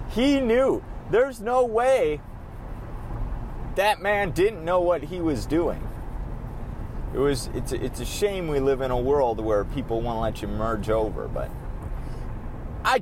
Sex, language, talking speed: male, English, 160 wpm